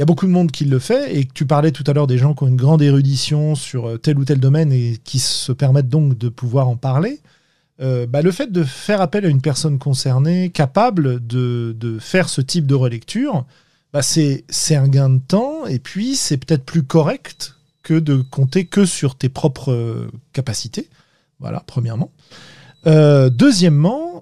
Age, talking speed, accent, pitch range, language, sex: 40-59, 200 wpm, French, 130-170 Hz, French, male